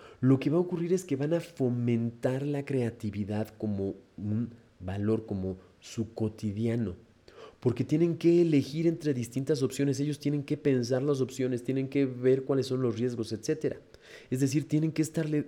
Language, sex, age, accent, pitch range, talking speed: Spanish, male, 40-59, Mexican, 105-140 Hz, 170 wpm